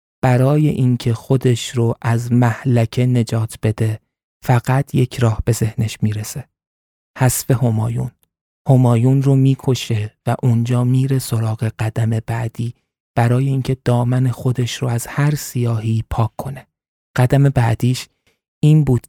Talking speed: 125 wpm